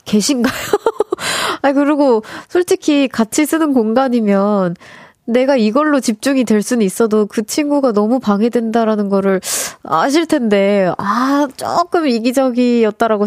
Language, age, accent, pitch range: Korean, 20-39, native, 195-270 Hz